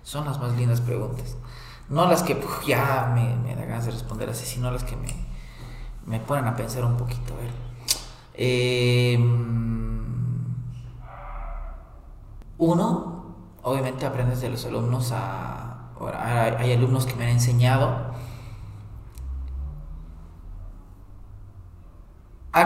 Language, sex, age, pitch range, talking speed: Spanish, male, 30-49, 95-130 Hz, 120 wpm